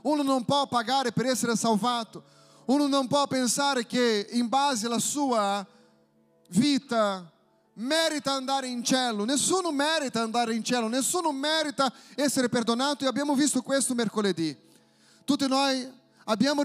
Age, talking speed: 30-49, 135 wpm